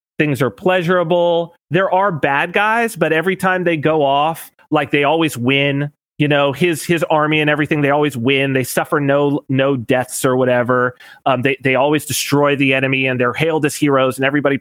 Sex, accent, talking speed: male, American, 195 wpm